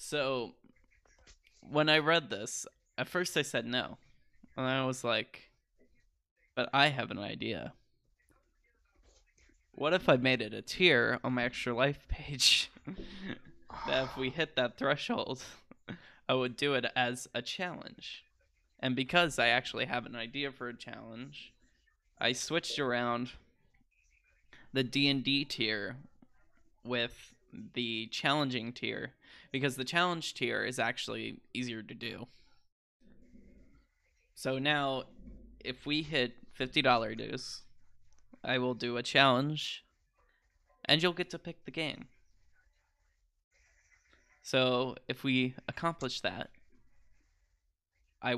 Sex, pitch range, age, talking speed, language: male, 120-140 Hz, 10-29, 120 wpm, English